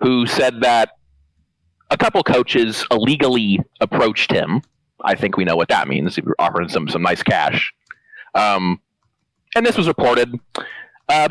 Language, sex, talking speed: English, male, 155 wpm